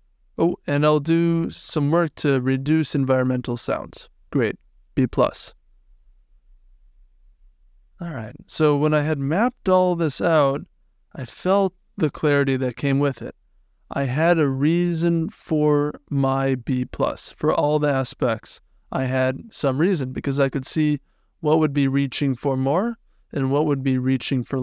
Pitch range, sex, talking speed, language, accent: 125-160 Hz, male, 155 wpm, English, American